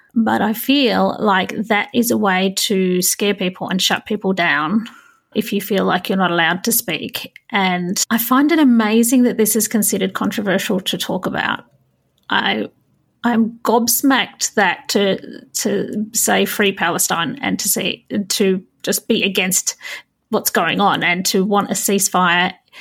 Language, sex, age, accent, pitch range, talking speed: English, female, 30-49, Australian, 195-230 Hz, 165 wpm